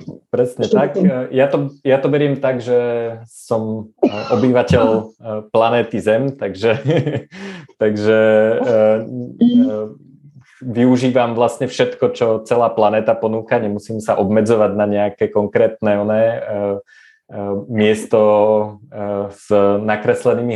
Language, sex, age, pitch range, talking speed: Slovak, male, 20-39, 110-130 Hz, 95 wpm